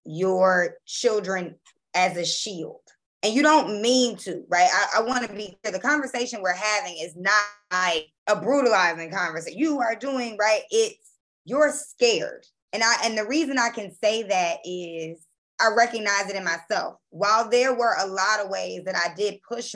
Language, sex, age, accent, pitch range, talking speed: English, female, 20-39, American, 185-245 Hz, 180 wpm